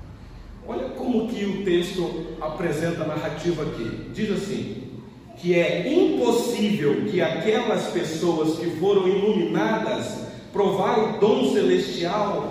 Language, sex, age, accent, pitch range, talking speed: Portuguese, male, 40-59, Brazilian, 160-220 Hz, 115 wpm